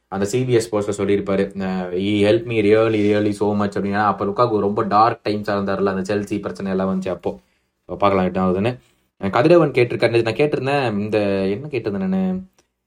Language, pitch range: Tamil, 100-130 Hz